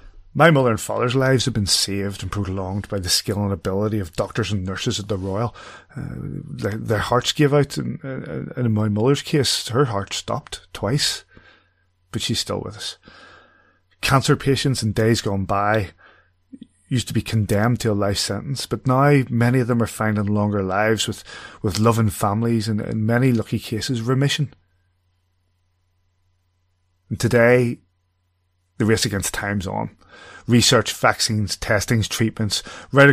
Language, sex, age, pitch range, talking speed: English, male, 30-49, 95-120 Hz, 160 wpm